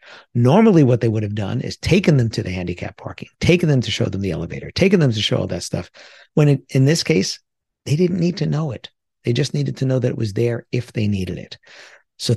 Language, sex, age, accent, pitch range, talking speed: English, male, 50-69, American, 110-150 Hz, 250 wpm